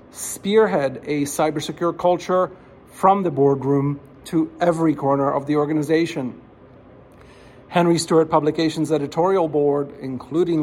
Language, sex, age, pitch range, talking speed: English, male, 50-69, 145-170 Hz, 105 wpm